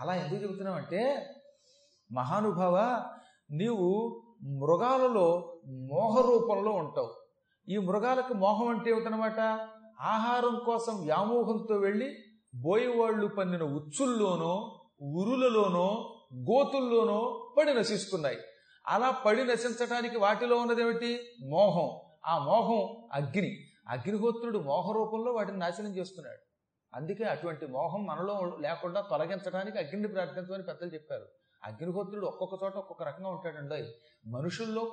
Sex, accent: male, native